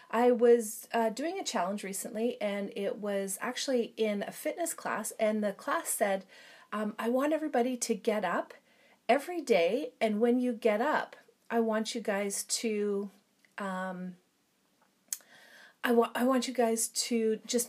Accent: American